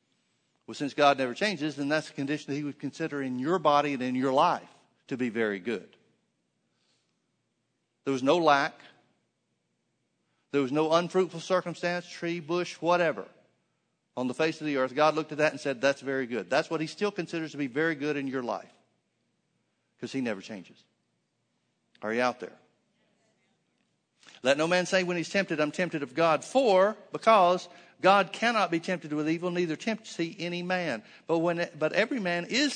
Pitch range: 145-180 Hz